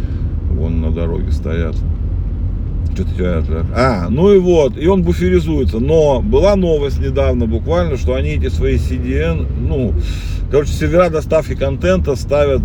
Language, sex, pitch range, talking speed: Russian, male, 80-110 Hz, 140 wpm